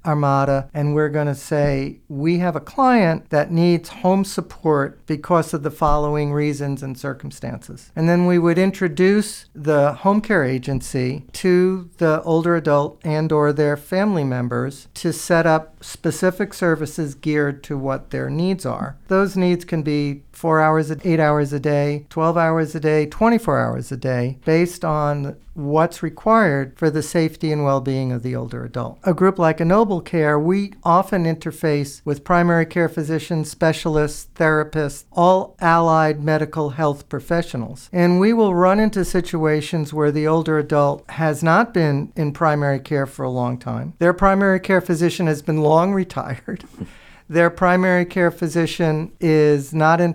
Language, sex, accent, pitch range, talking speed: English, male, American, 145-175 Hz, 160 wpm